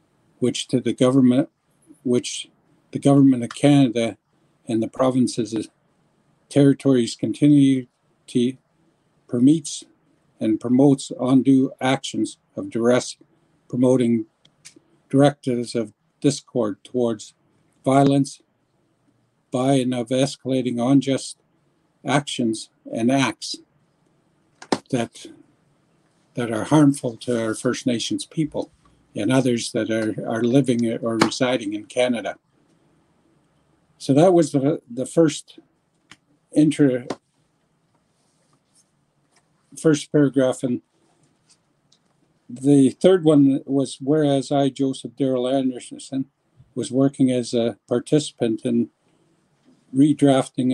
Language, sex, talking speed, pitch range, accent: English, male, 95 wpm, 125-150 Hz, American